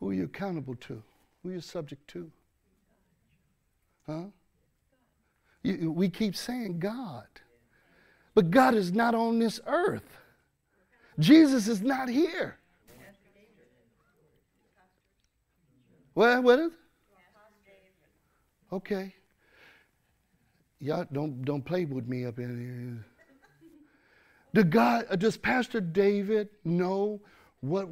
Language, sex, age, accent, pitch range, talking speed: English, male, 60-79, American, 160-225 Hz, 100 wpm